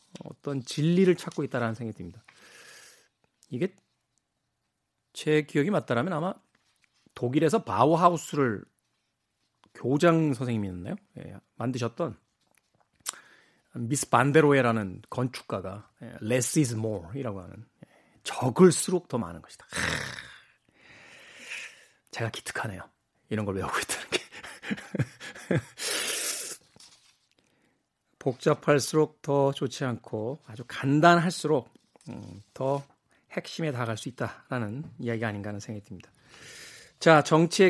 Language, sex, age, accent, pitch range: Korean, male, 40-59, native, 115-155 Hz